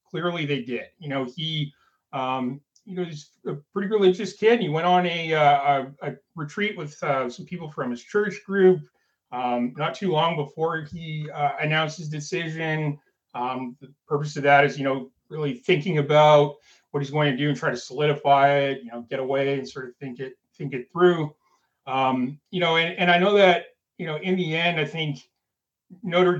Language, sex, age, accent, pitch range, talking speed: English, male, 30-49, American, 140-175 Hz, 200 wpm